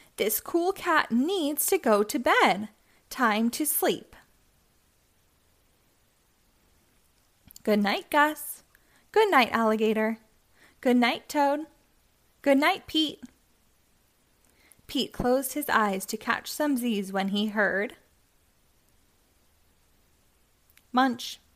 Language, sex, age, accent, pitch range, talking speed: English, female, 20-39, American, 215-295 Hz, 95 wpm